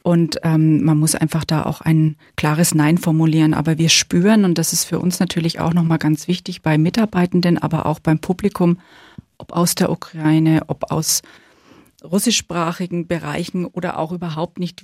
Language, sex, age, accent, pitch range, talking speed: German, female, 40-59, German, 165-185 Hz, 170 wpm